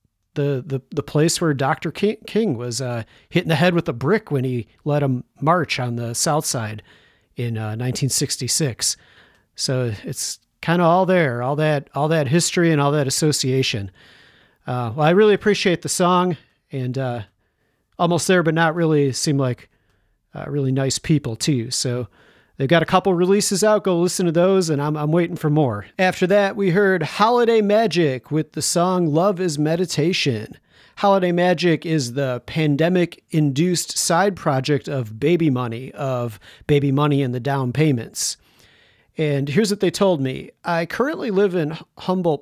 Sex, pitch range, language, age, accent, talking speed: male, 130-175 Hz, English, 40-59, American, 170 wpm